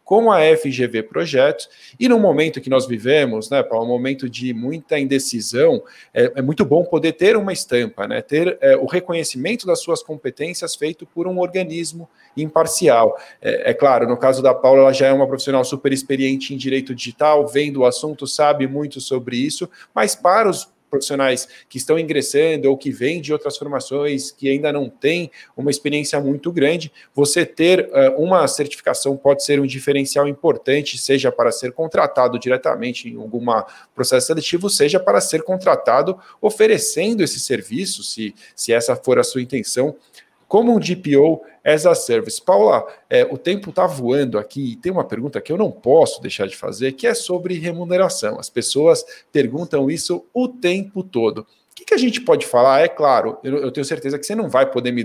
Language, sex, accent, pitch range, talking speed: Portuguese, male, Brazilian, 135-180 Hz, 185 wpm